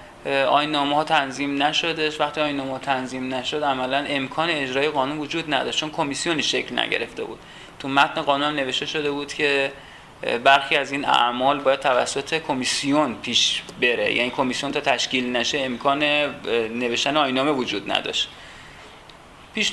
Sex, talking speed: male, 145 wpm